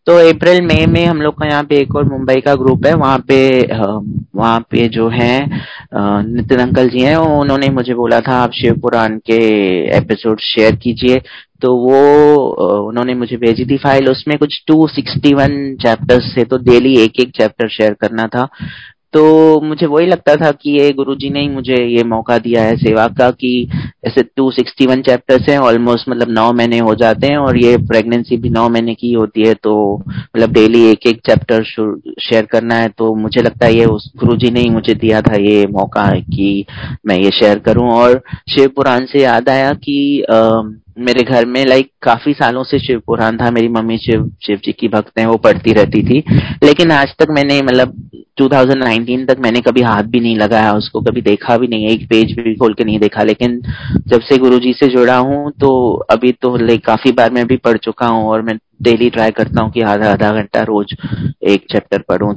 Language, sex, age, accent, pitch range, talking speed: Hindi, male, 30-49, native, 110-135 Hz, 205 wpm